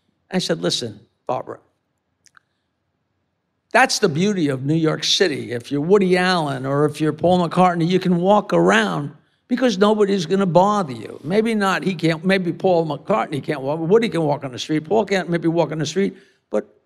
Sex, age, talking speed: male, 50-69, 190 wpm